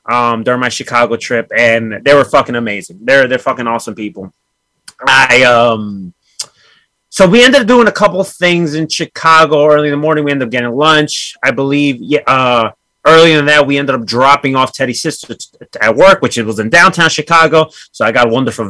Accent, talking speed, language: American, 205 wpm, English